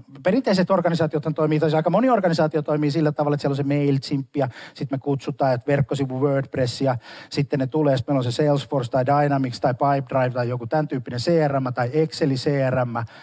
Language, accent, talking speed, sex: Finnish, native, 180 wpm, male